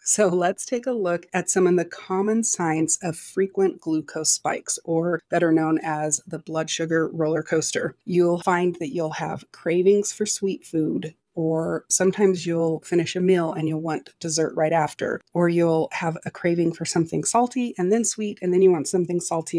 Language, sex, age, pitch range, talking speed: English, female, 30-49, 160-185 Hz, 190 wpm